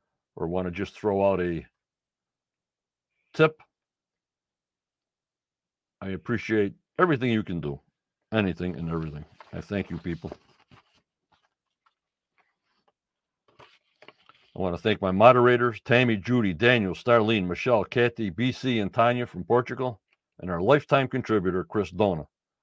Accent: American